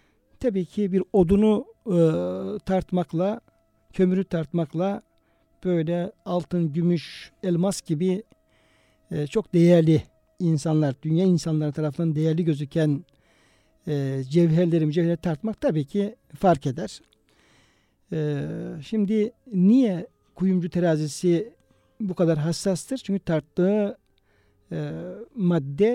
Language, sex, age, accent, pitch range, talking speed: Turkish, male, 60-79, native, 155-195 Hz, 95 wpm